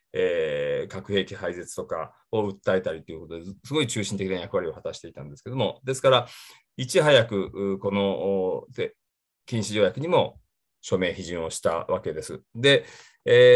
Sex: male